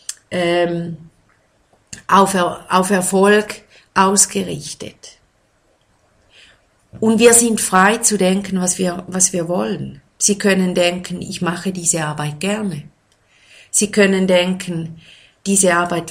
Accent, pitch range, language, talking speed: German, 150-200 Hz, German, 110 wpm